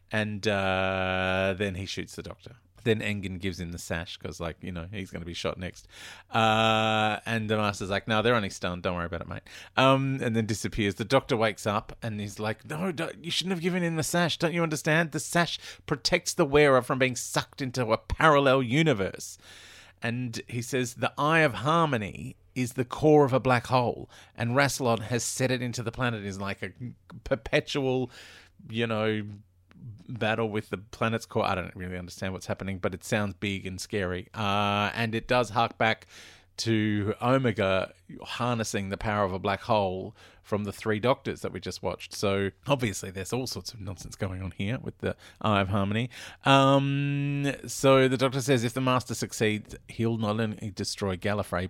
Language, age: English, 30-49